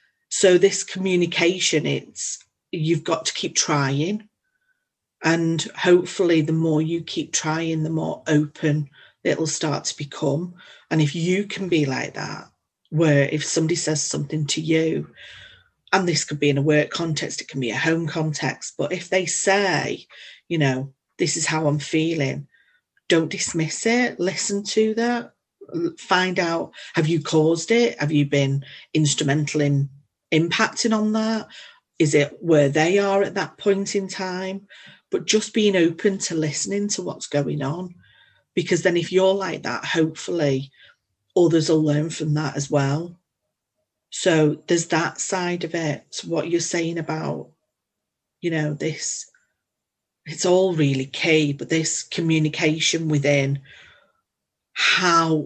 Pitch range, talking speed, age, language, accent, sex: 150-185 Hz, 150 wpm, 40-59, English, British, female